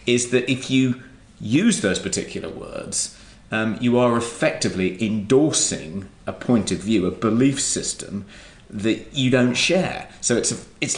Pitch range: 100-125 Hz